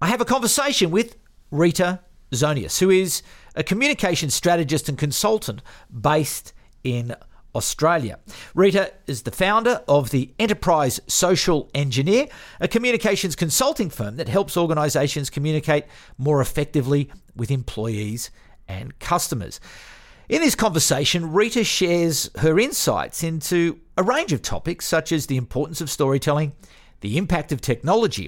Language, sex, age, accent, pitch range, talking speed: English, male, 50-69, Australian, 130-180 Hz, 130 wpm